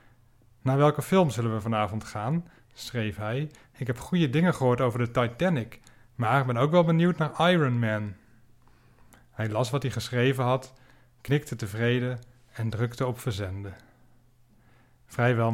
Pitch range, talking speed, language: 115-130 Hz, 150 wpm, Dutch